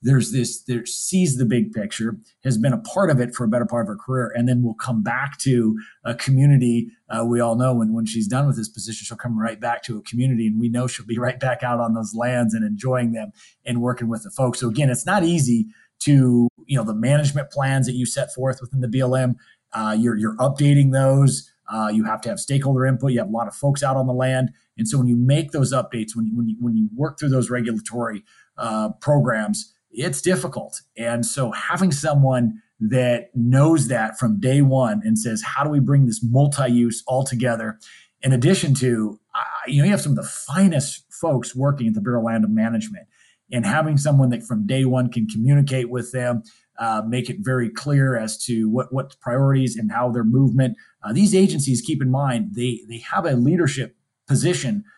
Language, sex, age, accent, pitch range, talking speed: English, male, 30-49, American, 115-140 Hz, 220 wpm